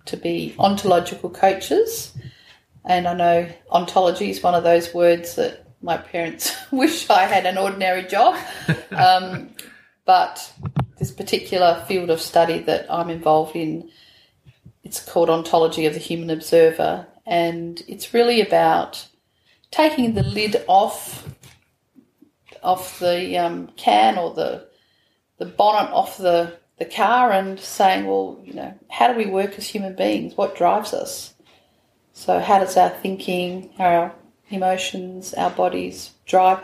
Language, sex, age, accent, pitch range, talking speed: English, female, 40-59, Australian, 170-200 Hz, 140 wpm